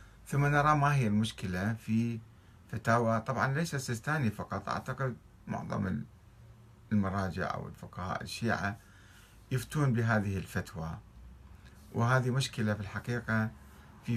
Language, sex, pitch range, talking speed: Arabic, male, 100-120 Hz, 105 wpm